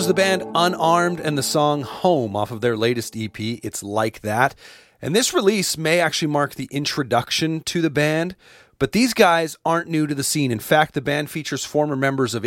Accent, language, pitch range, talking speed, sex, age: American, English, 115-155 Hz, 200 wpm, male, 30-49